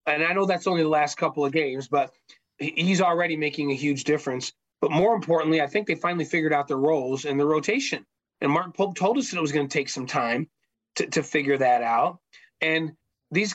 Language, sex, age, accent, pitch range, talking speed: English, male, 30-49, American, 155-195 Hz, 225 wpm